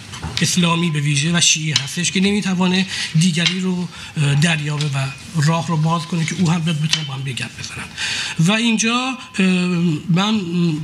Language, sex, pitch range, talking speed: Persian, male, 170-195 Hz, 145 wpm